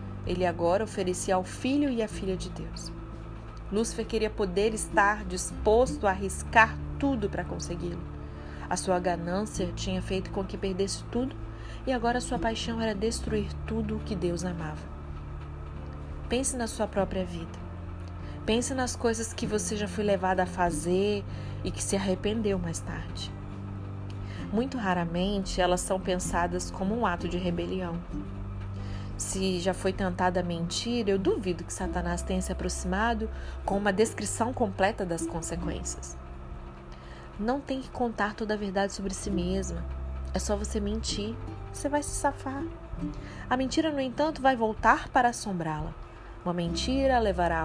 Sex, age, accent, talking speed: female, 30-49, Brazilian, 150 wpm